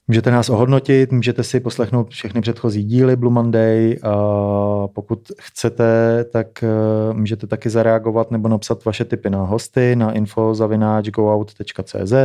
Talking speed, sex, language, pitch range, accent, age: 125 wpm, male, Czech, 105-115 Hz, native, 30-49